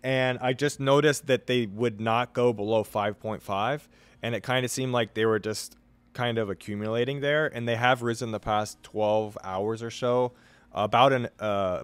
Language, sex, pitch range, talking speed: English, male, 95-120 Hz, 190 wpm